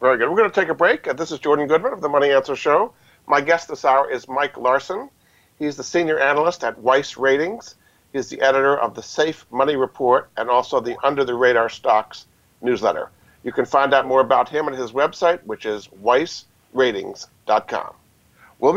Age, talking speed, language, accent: 50-69, 195 wpm, English, American